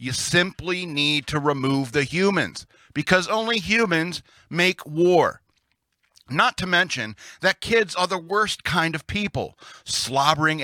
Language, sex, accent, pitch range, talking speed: English, male, American, 135-180 Hz, 135 wpm